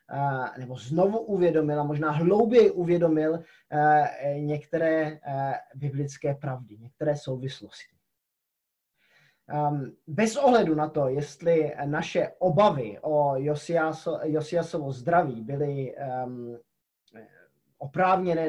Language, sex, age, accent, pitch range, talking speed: Czech, male, 20-39, native, 140-175 Hz, 80 wpm